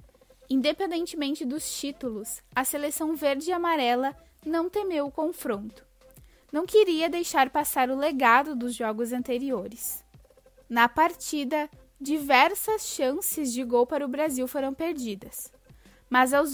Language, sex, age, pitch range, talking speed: Portuguese, female, 10-29, 255-325 Hz, 125 wpm